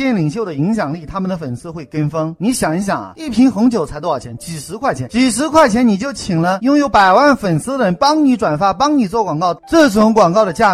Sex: male